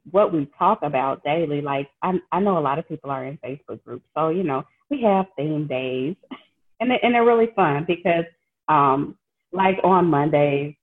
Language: English